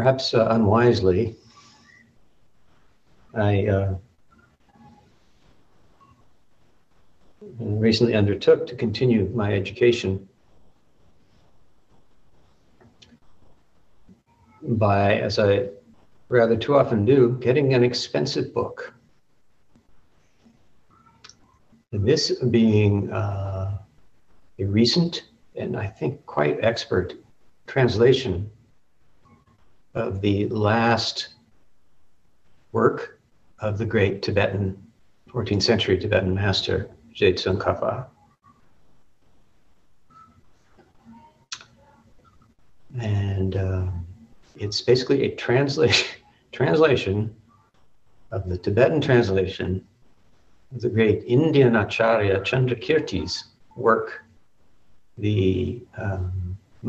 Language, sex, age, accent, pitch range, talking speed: English, male, 60-79, American, 95-120 Hz, 70 wpm